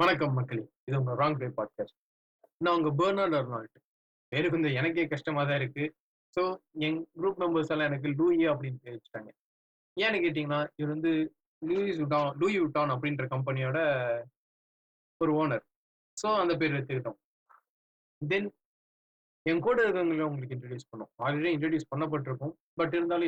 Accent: native